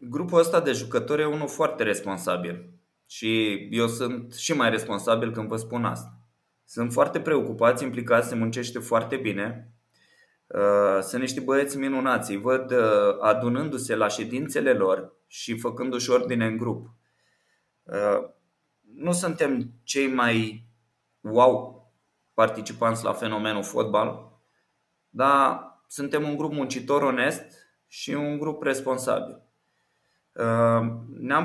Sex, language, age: male, Romanian, 20-39